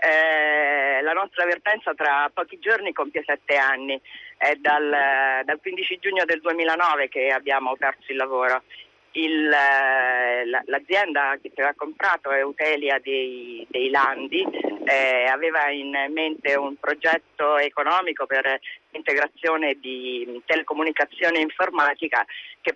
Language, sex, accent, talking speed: Italian, female, native, 130 wpm